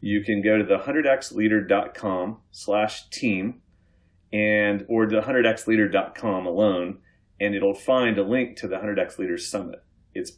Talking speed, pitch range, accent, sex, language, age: 140 wpm, 100-135 Hz, American, male, English, 30-49